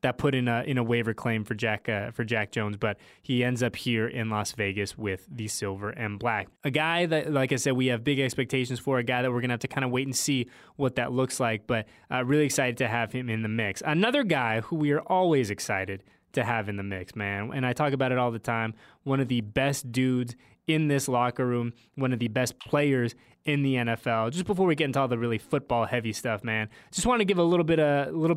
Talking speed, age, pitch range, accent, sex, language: 260 wpm, 20-39, 115-135 Hz, American, male, English